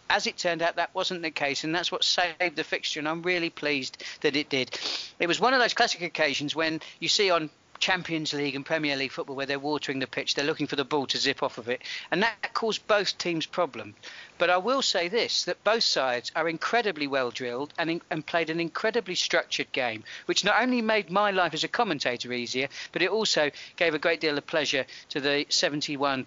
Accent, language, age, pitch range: British, English, 40-59, 135-180 Hz